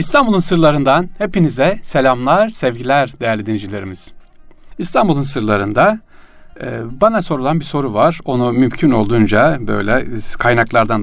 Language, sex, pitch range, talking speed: Turkish, male, 105-145 Hz, 105 wpm